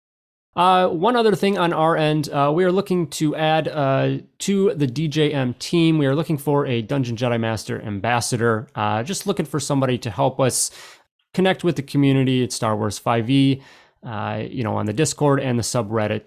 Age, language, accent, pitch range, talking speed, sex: 30-49, English, American, 115-150 Hz, 190 wpm, male